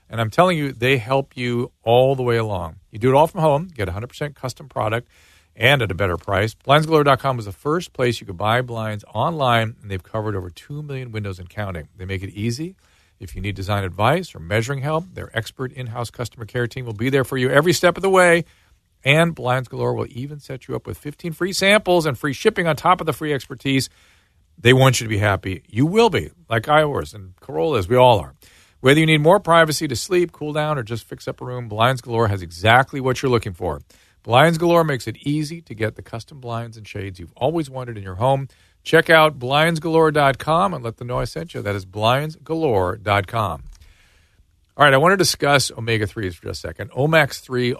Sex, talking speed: male, 220 wpm